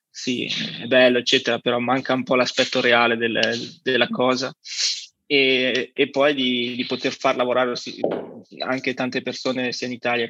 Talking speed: 155 wpm